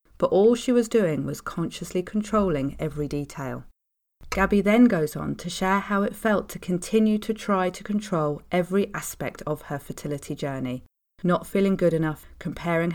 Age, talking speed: 30-49, 165 wpm